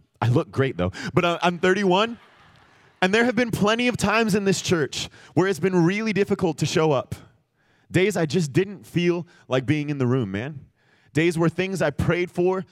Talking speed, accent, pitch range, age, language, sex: 200 wpm, American, 135-175 Hz, 30-49, English, male